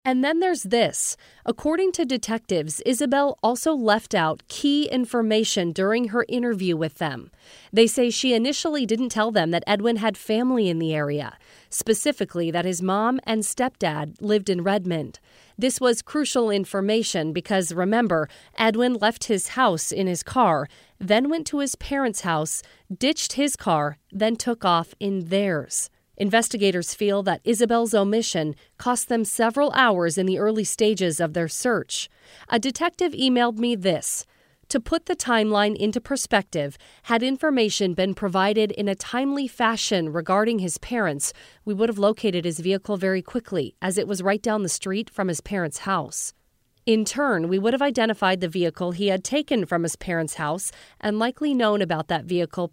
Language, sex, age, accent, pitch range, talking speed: English, female, 40-59, American, 185-240 Hz, 165 wpm